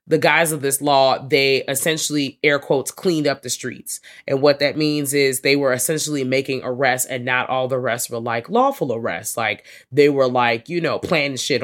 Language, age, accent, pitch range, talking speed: English, 20-39, American, 140-190 Hz, 205 wpm